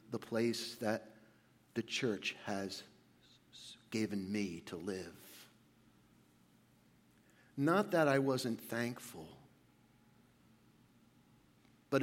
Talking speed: 80 wpm